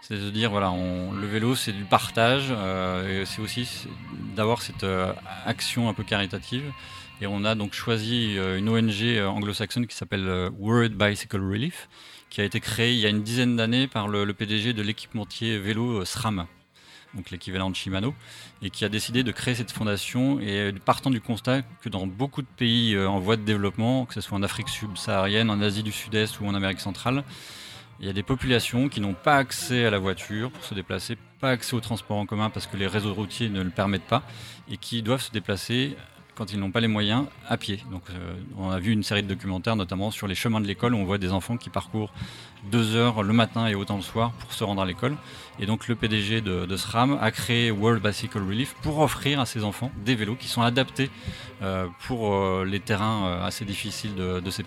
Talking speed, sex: 220 wpm, male